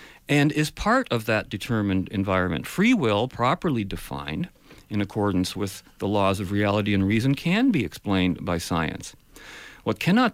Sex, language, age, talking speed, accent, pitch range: male, English, 50-69, 155 wpm, American, 100-150 Hz